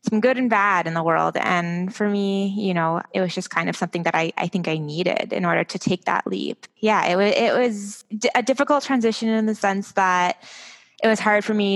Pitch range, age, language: 175-215 Hz, 20-39, English